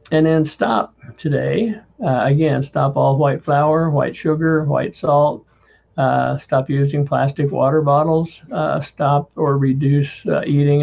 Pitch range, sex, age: 135-155 Hz, male, 60-79